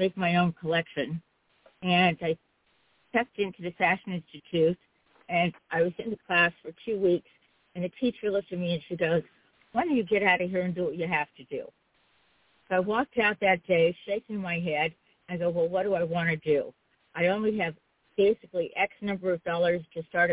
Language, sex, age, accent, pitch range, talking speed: English, female, 50-69, American, 170-200 Hz, 215 wpm